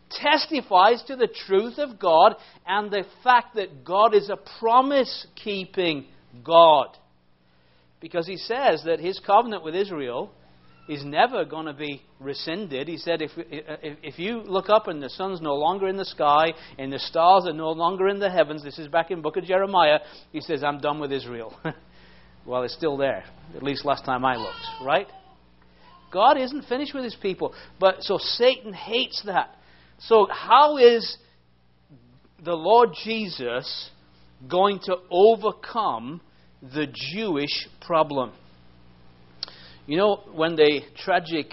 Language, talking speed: English, 155 wpm